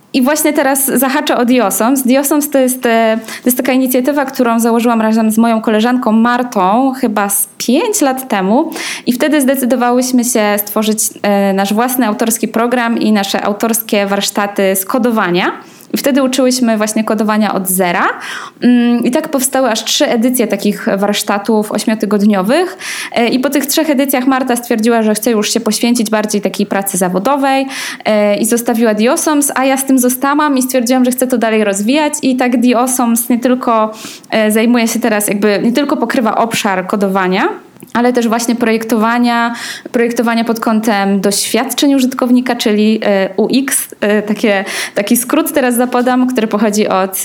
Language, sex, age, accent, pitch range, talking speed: Polish, female, 20-39, native, 215-260 Hz, 150 wpm